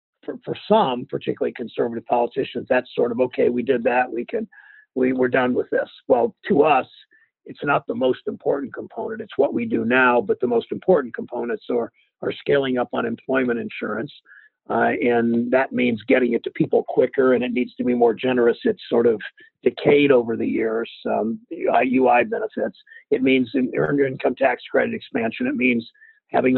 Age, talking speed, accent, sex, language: 50-69, 185 wpm, American, male, English